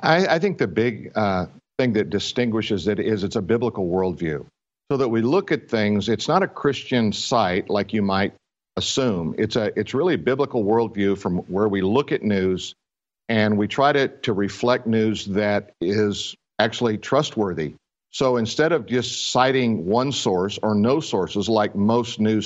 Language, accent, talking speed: English, American, 180 wpm